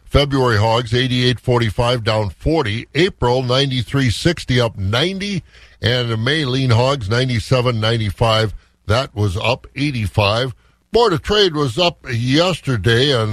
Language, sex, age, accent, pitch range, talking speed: English, male, 50-69, American, 110-140 Hz, 115 wpm